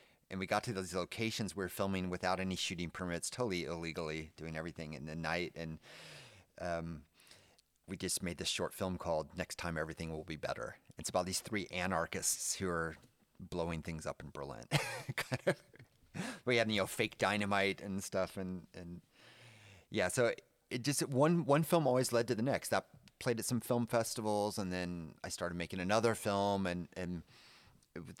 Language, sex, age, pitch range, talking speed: English, male, 30-49, 90-115 Hz, 185 wpm